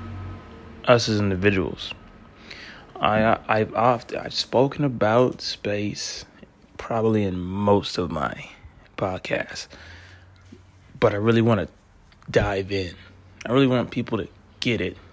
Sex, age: male, 20-39